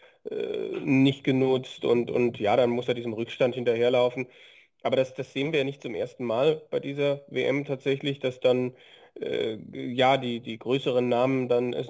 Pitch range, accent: 120-135 Hz, German